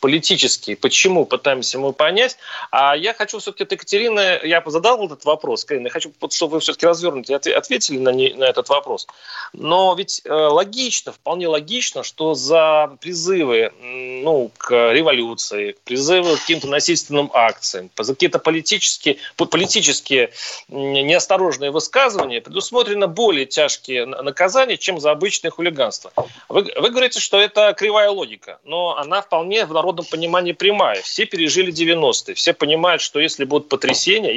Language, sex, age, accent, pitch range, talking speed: Russian, male, 30-49, native, 155-265 Hz, 140 wpm